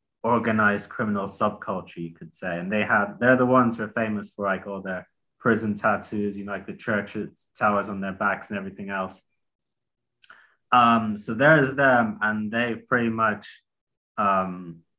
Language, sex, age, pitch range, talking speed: English, male, 20-39, 100-115 Hz, 170 wpm